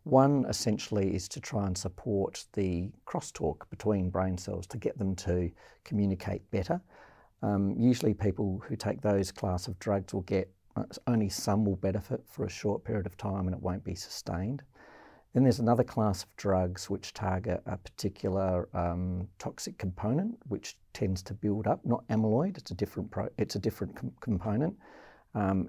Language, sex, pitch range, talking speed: English, male, 95-105 Hz, 175 wpm